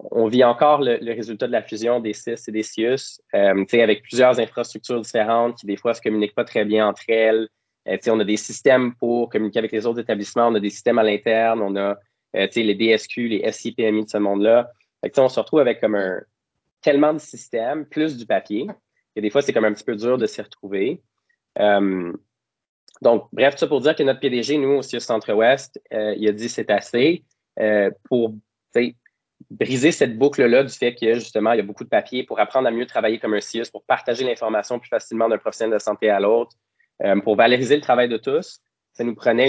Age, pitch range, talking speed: 20-39, 105-120 Hz, 220 wpm